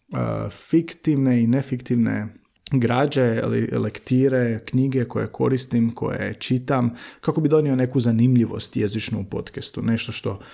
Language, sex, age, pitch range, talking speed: Croatian, male, 30-49, 105-125 Hz, 120 wpm